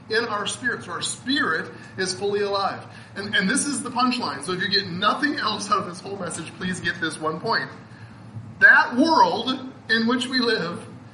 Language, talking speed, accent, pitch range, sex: English, 200 wpm, American, 170-260 Hz, male